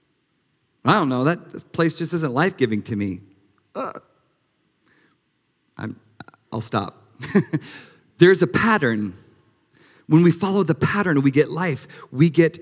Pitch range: 135-185 Hz